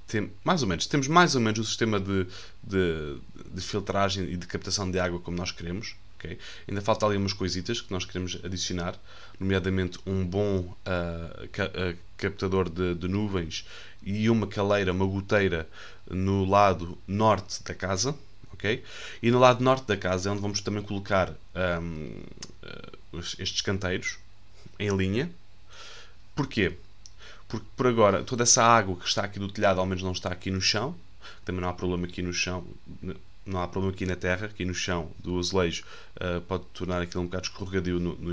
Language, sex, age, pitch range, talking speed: Portuguese, male, 20-39, 90-105 Hz, 165 wpm